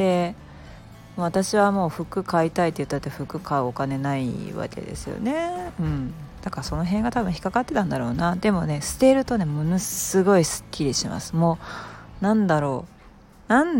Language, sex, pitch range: Japanese, female, 150-205 Hz